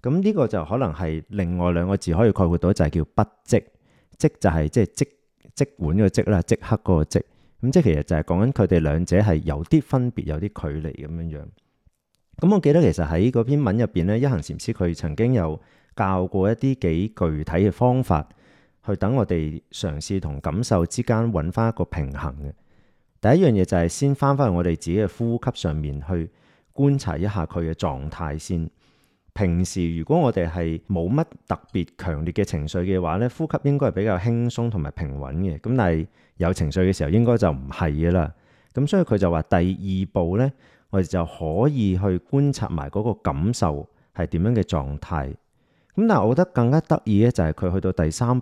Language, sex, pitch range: Chinese, male, 80-115 Hz